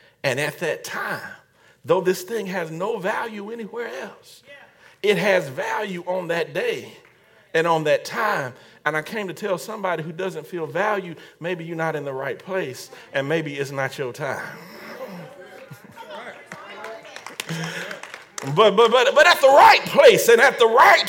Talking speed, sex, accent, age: 160 wpm, male, American, 40-59